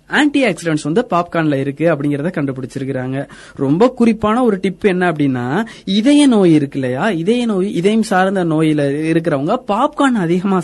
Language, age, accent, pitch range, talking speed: Tamil, 20-39, native, 165-230 Hz, 100 wpm